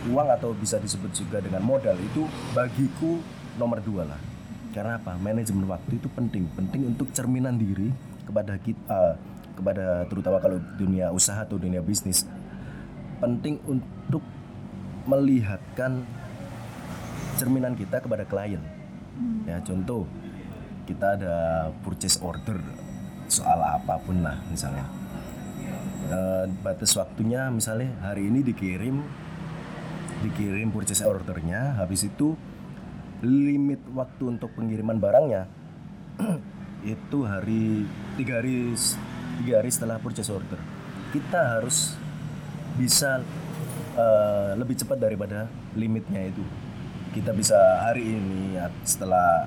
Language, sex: Indonesian, male